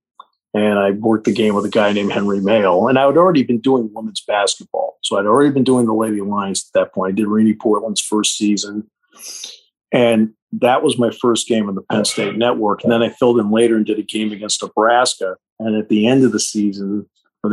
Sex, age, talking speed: male, 50-69, 230 wpm